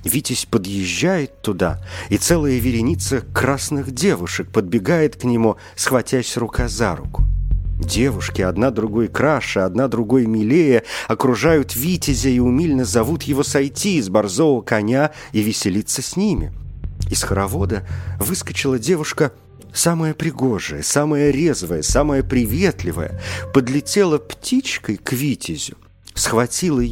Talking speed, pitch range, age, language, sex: 115 wpm, 95-145 Hz, 50-69, Russian, male